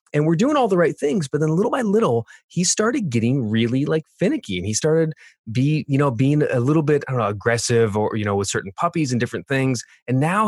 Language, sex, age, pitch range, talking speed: English, male, 20-39, 105-140 Hz, 245 wpm